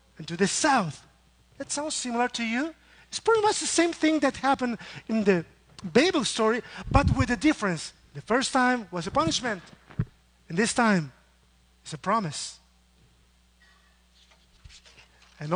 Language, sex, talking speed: English, male, 145 wpm